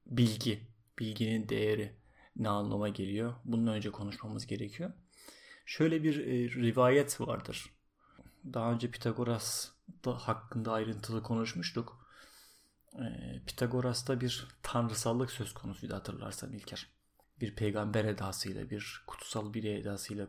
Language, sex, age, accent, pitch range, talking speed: Turkish, male, 30-49, native, 105-125 Hz, 105 wpm